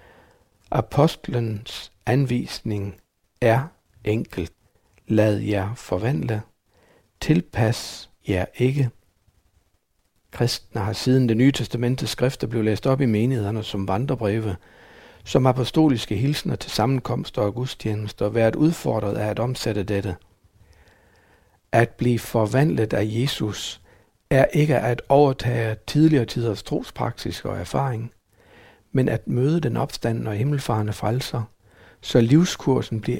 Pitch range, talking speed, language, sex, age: 100-125 Hz, 115 wpm, Danish, male, 60-79